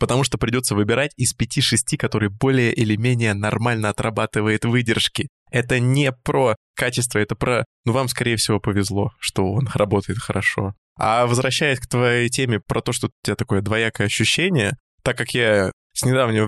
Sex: male